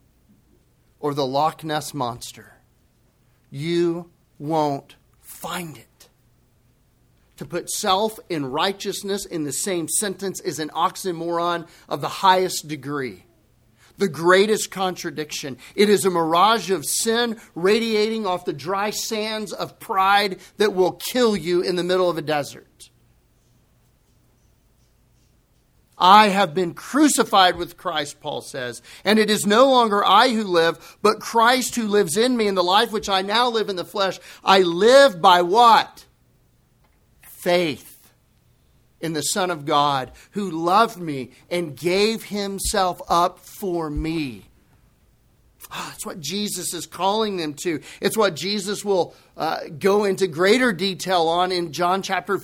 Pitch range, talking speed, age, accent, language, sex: 160-205 Hz, 140 wpm, 40-59, American, English, male